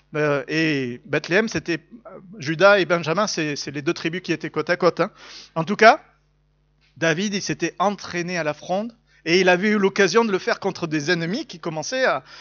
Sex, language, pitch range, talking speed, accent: male, French, 165-220 Hz, 200 wpm, French